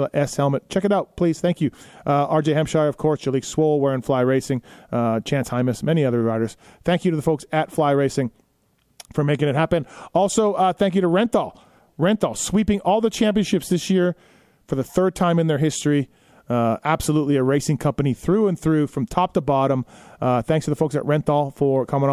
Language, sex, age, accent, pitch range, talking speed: English, male, 30-49, American, 135-165 Hz, 210 wpm